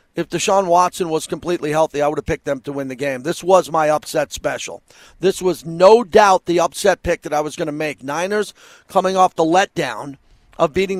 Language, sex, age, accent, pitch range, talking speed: English, male, 40-59, American, 160-210 Hz, 220 wpm